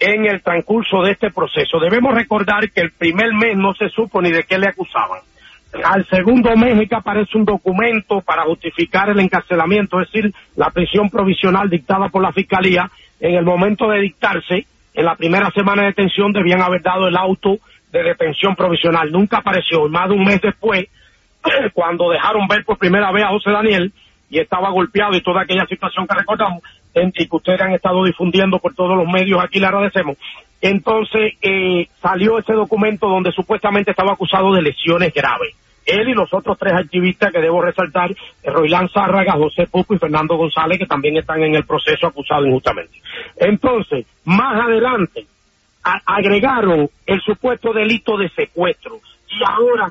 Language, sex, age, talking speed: English, male, 40-59, 175 wpm